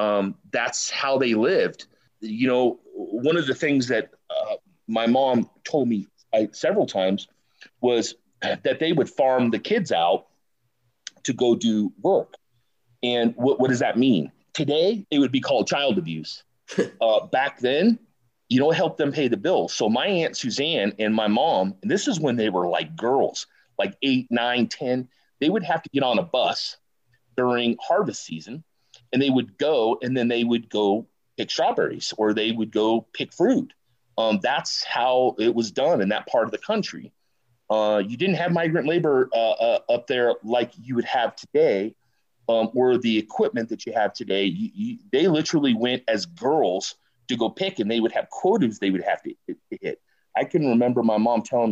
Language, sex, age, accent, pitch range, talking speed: English, male, 40-59, American, 110-155 Hz, 190 wpm